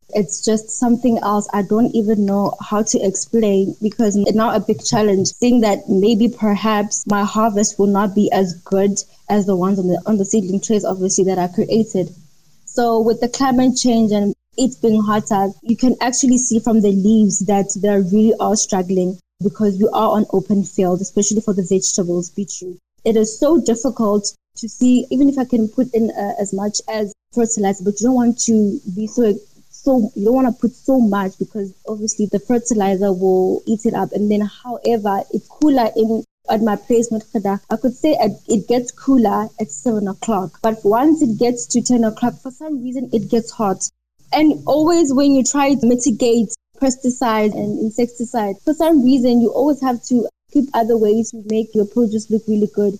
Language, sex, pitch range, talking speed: English, female, 200-235 Hz, 200 wpm